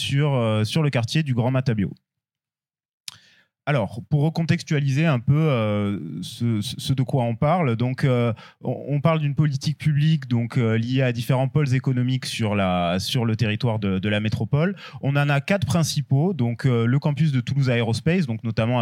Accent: French